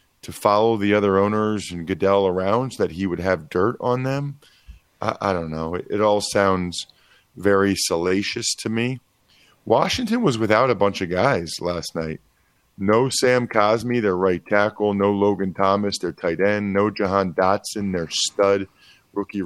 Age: 40-59